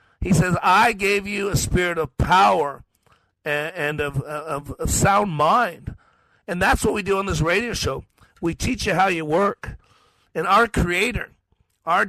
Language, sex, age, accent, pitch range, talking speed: English, male, 50-69, American, 130-180 Hz, 170 wpm